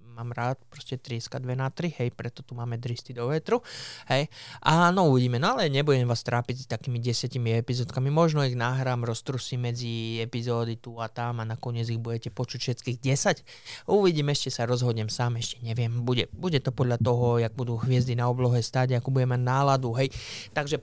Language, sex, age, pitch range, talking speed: Slovak, male, 20-39, 120-135 Hz, 190 wpm